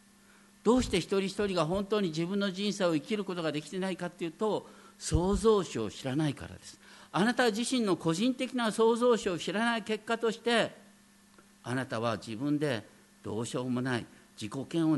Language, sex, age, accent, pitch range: Japanese, male, 50-69, native, 170-230 Hz